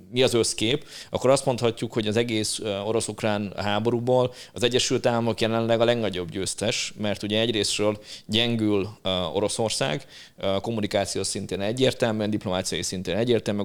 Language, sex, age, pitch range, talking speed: Hungarian, male, 30-49, 95-115 Hz, 125 wpm